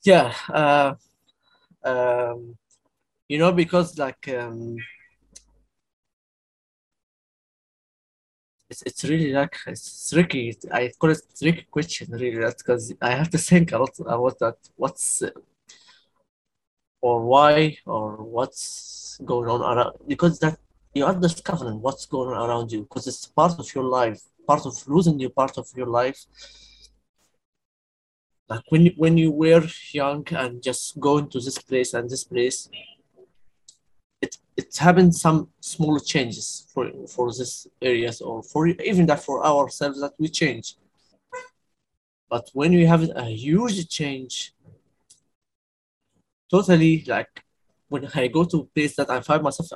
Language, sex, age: English, male, 20-39